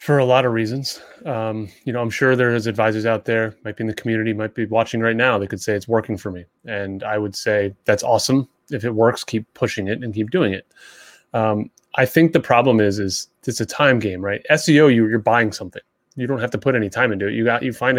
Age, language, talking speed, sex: 30-49, English, 255 wpm, male